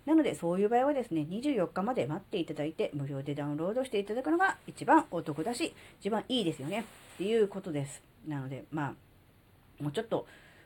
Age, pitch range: 40-59, 145-215 Hz